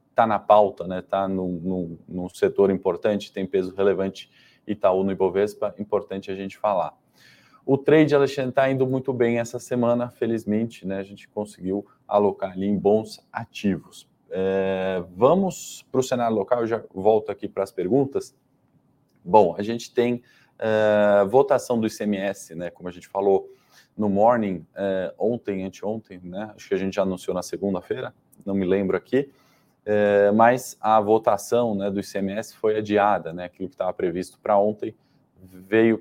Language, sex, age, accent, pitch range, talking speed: Portuguese, male, 20-39, Brazilian, 95-115 Hz, 165 wpm